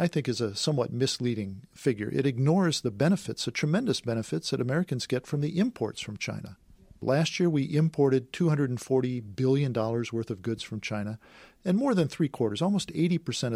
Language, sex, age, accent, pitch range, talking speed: English, male, 50-69, American, 115-145 Hz, 175 wpm